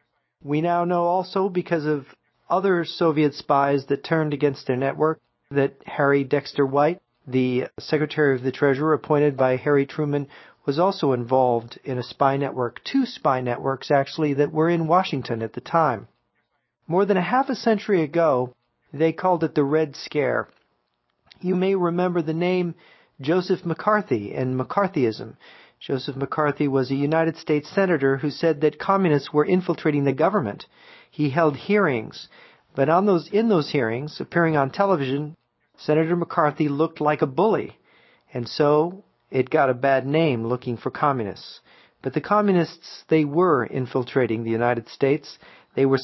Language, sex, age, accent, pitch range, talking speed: English, male, 40-59, American, 135-170 Hz, 160 wpm